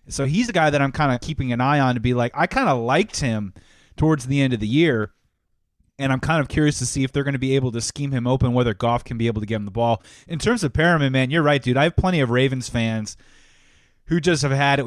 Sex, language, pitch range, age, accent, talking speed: male, English, 120-150 Hz, 30-49, American, 290 wpm